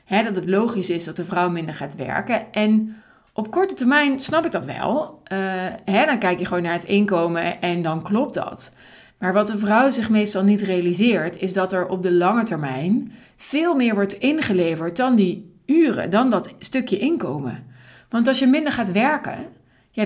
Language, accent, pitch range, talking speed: Dutch, Dutch, 175-225 Hz, 190 wpm